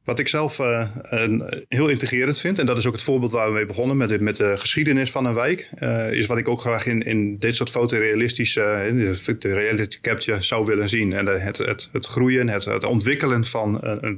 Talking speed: 230 wpm